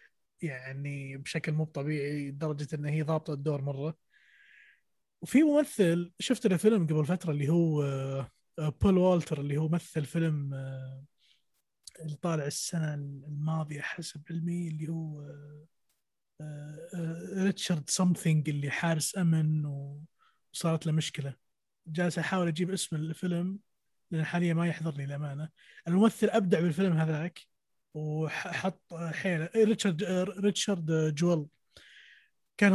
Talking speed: 110 wpm